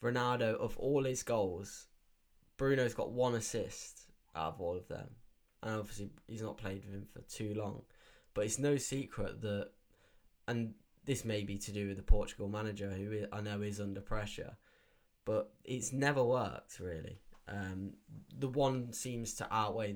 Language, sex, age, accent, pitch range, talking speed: English, male, 10-29, British, 100-120 Hz, 170 wpm